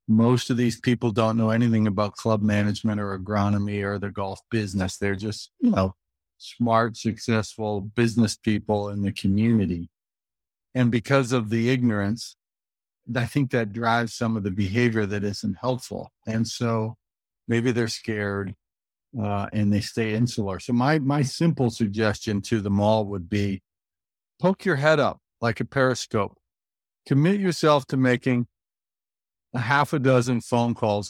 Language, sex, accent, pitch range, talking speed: English, male, American, 100-125 Hz, 155 wpm